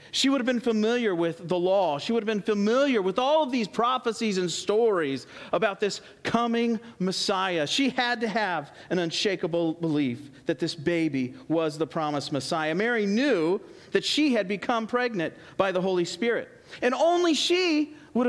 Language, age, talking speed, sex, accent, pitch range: English, 40-59, 175 wpm, male, American, 165-240 Hz